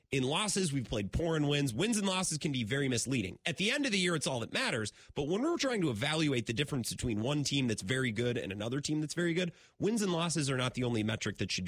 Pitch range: 110-170 Hz